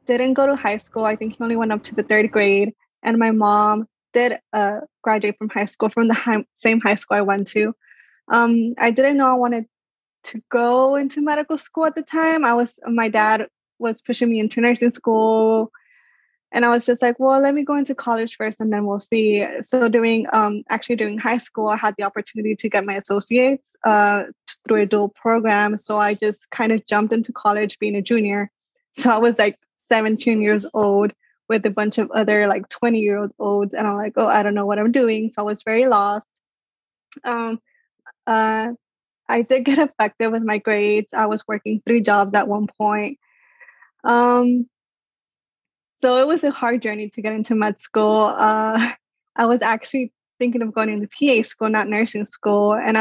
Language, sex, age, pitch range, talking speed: English, female, 10-29, 210-240 Hz, 205 wpm